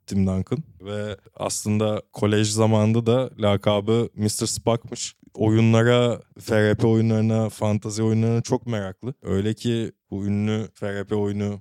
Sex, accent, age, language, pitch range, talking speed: male, native, 20-39, Turkish, 100-115 Hz, 120 wpm